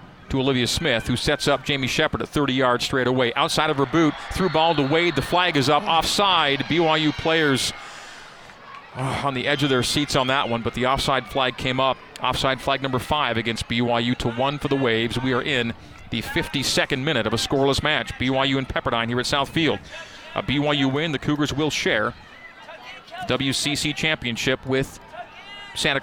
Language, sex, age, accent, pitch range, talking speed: English, male, 40-59, American, 125-150 Hz, 185 wpm